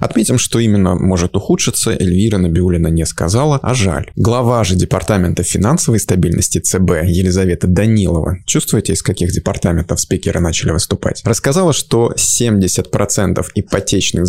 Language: Russian